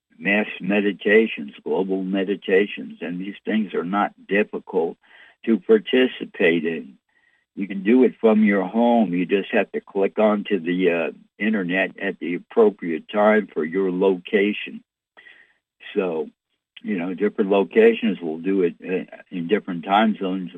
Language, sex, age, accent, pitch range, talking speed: English, male, 60-79, American, 95-140 Hz, 140 wpm